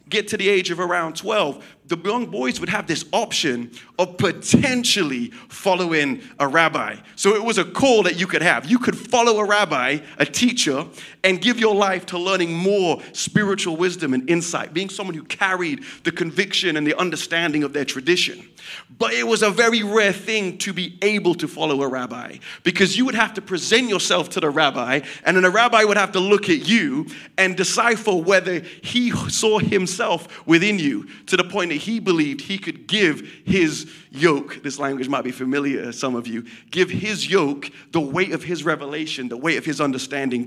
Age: 30-49